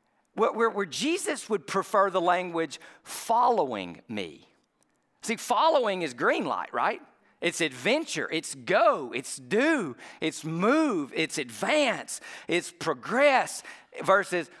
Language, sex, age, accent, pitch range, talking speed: English, male, 50-69, American, 155-220 Hz, 115 wpm